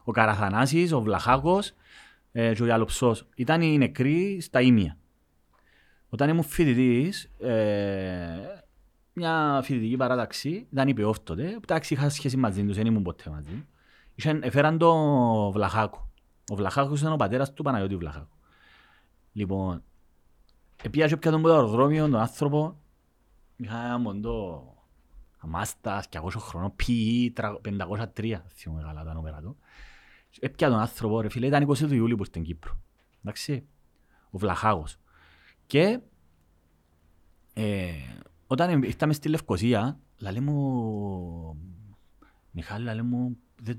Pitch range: 90-135 Hz